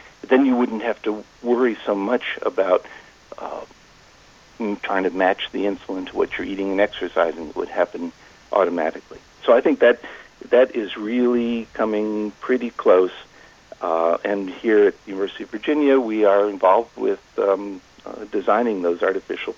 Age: 60-79